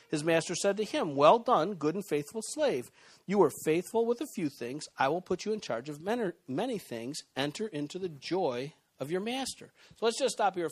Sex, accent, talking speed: male, American, 220 wpm